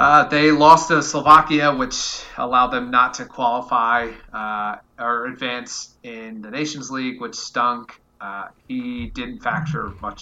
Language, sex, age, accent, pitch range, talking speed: English, male, 30-49, American, 105-130 Hz, 145 wpm